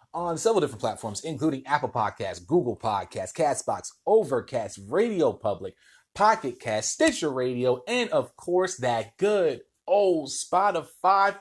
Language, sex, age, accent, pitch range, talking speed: English, male, 30-49, American, 115-170 Hz, 125 wpm